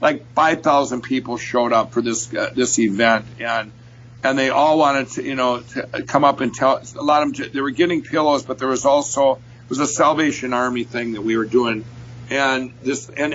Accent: American